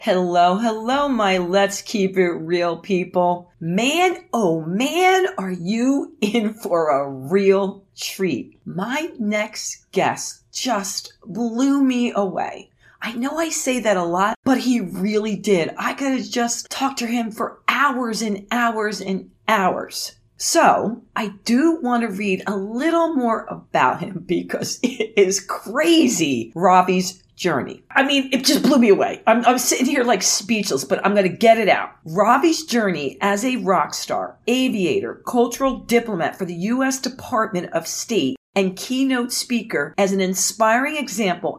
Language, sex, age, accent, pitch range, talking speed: English, female, 40-59, American, 195-250 Hz, 155 wpm